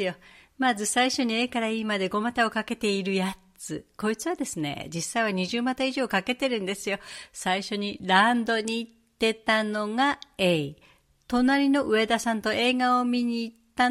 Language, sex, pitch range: Japanese, female, 185-250 Hz